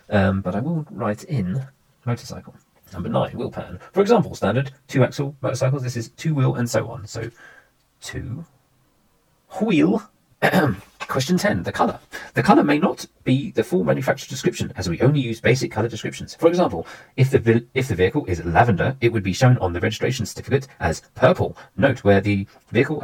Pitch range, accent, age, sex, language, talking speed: 110-130 Hz, British, 40-59, male, English, 185 wpm